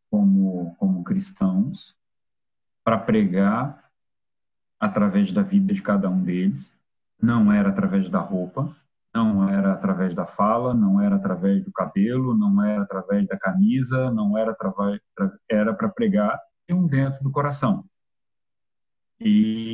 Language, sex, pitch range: Portuguese, male, 120-195 Hz